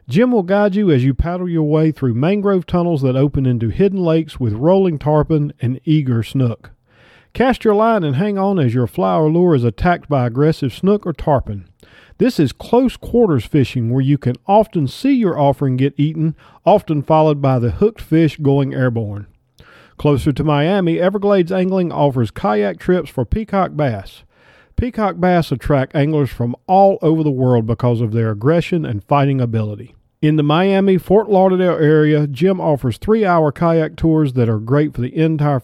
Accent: American